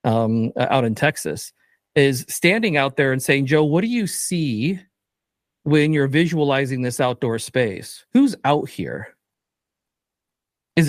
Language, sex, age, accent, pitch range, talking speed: English, male, 40-59, American, 130-170 Hz, 140 wpm